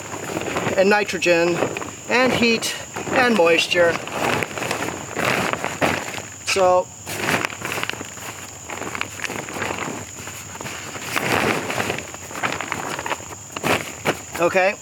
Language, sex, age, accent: English, male, 30-49, American